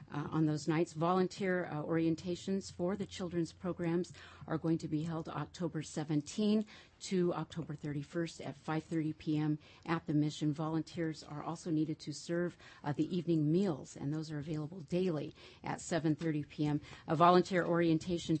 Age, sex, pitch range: 50-69, female, 150-170 Hz